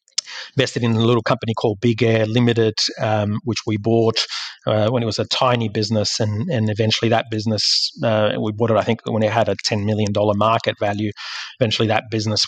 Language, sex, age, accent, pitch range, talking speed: English, male, 30-49, Australian, 110-120 Hz, 200 wpm